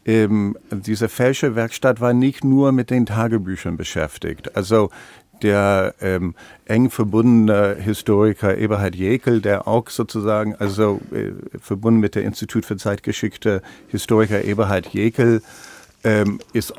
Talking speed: 125 wpm